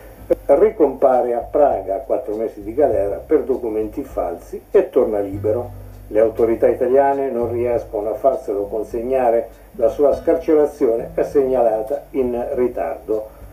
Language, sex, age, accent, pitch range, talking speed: Italian, male, 50-69, native, 115-150 Hz, 130 wpm